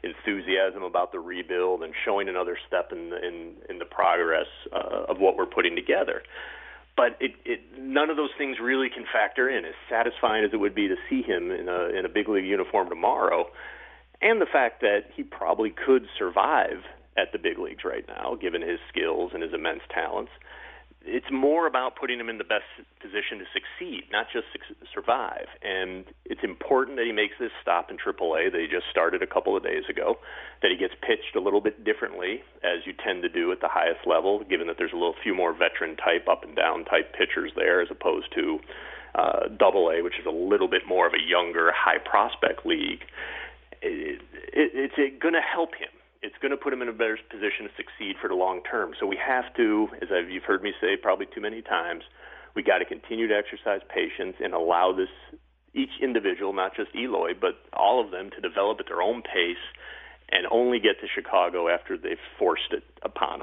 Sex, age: male, 40-59